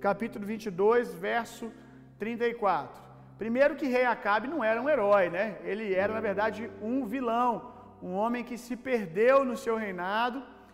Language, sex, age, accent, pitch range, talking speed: Gujarati, male, 40-59, Brazilian, 215-270 Hz, 150 wpm